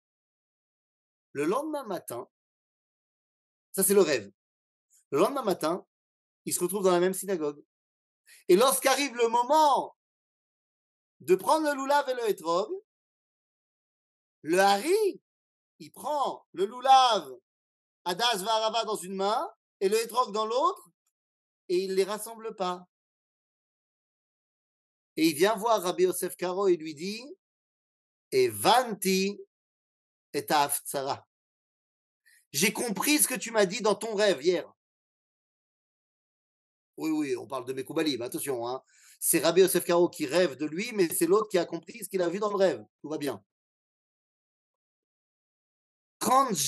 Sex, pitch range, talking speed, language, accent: male, 185-290 Hz, 140 wpm, French, French